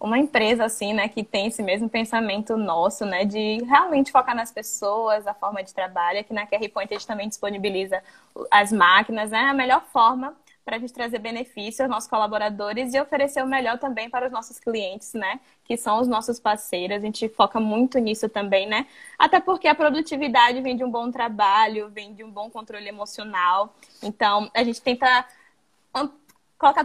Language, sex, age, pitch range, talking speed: Portuguese, female, 10-29, 210-265 Hz, 190 wpm